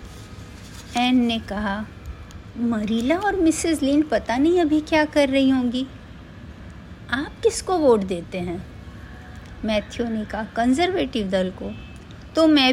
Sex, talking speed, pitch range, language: female, 125 wpm, 195-270 Hz, Hindi